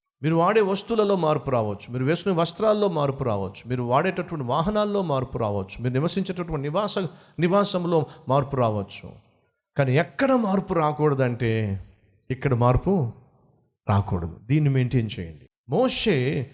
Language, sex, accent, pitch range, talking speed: Telugu, male, native, 125-195 Hz, 95 wpm